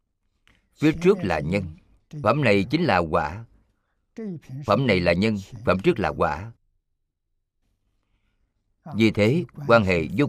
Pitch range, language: 85-110 Hz, Vietnamese